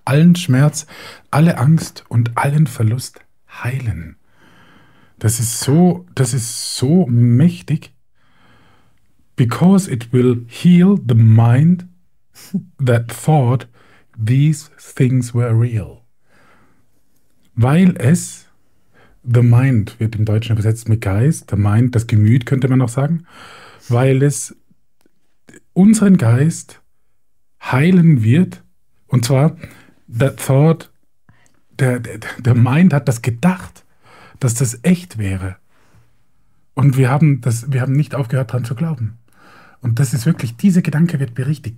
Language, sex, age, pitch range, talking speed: German, male, 50-69, 115-150 Hz, 115 wpm